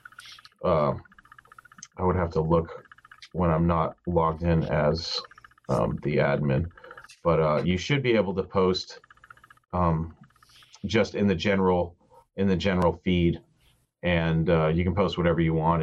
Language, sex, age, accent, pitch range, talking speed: English, male, 30-49, American, 85-115 Hz, 150 wpm